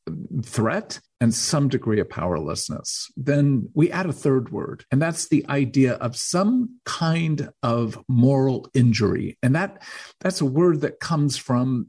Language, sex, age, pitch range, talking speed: English, male, 50-69, 115-150 Hz, 150 wpm